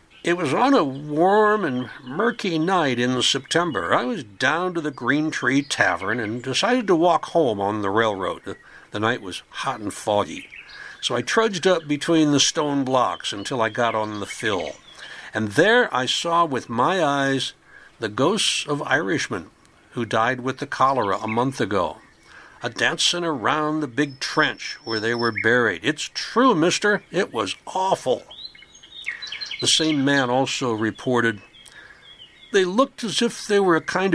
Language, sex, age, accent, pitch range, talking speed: English, male, 60-79, American, 115-165 Hz, 165 wpm